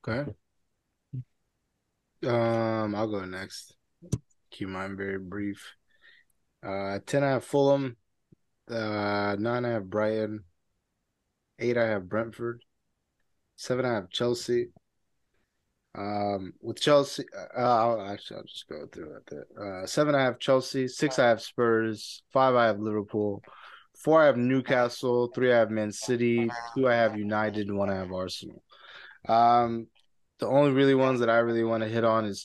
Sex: male